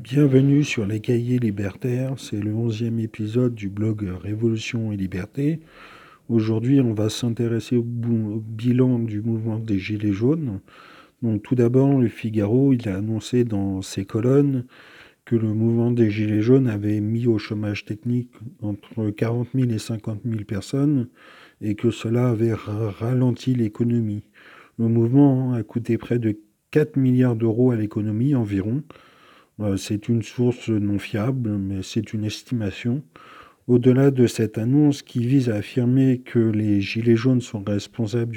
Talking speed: 145 wpm